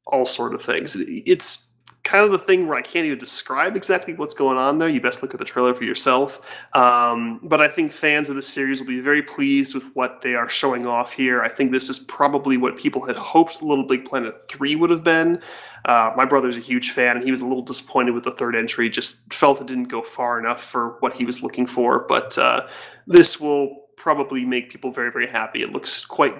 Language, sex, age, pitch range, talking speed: English, male, 20-39, 120-150 Hz, 235 wpm